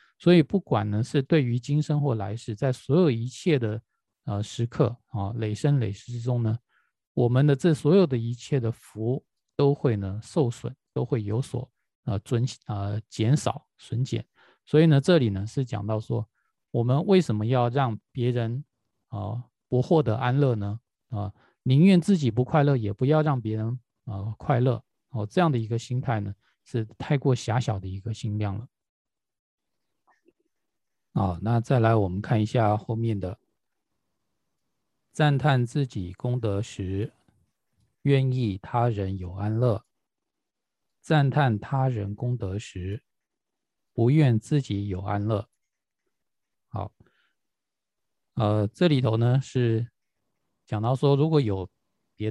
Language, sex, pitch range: Chinese, male, 105-135 Hz